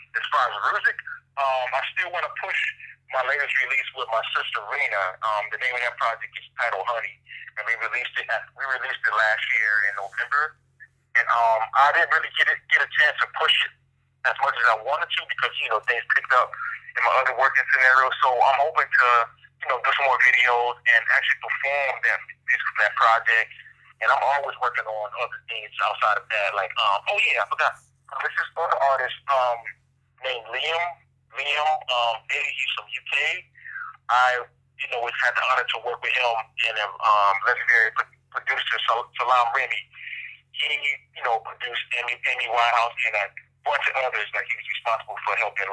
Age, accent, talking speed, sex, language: 40-59, American, 195 wpm, male, English